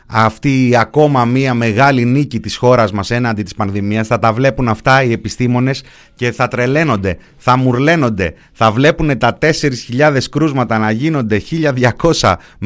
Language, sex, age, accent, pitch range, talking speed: Greek, male, 30-49, native, 100-130 Hz, 140 wpm